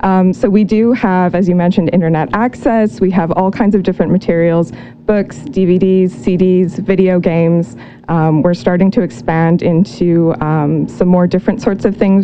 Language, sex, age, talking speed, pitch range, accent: English, female, 20-39, 170 wpm, 170-200 Hz, American